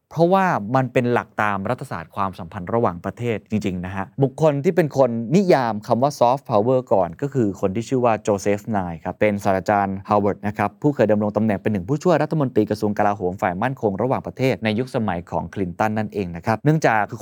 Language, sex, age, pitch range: Thai, male, 20-39, 105-135 Hz